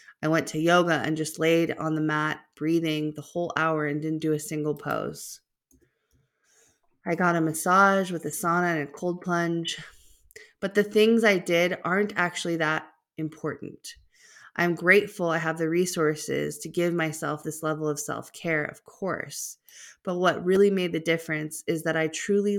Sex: female